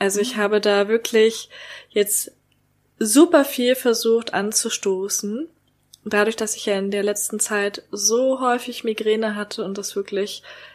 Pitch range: 200-230 Hz